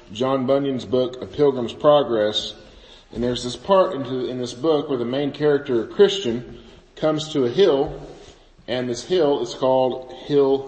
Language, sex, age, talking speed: English, male, 40-59, 165 wpm